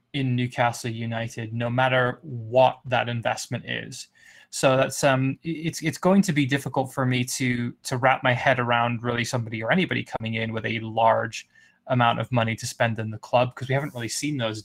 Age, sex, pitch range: 20-39, male, 115-135 Hz